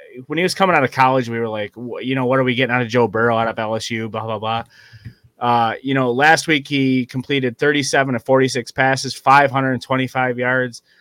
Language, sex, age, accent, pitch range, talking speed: English, male, 30-49, American, 115-135 Hz, 215 wpm